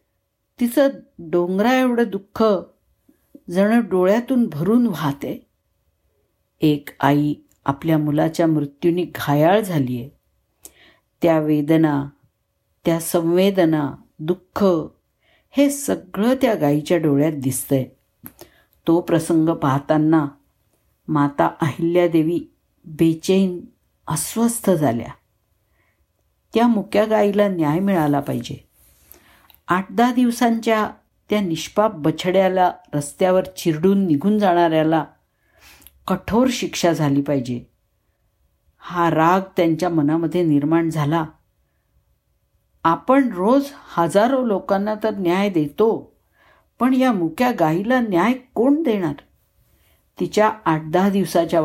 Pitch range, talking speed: 145-205 Hz, 90 wpm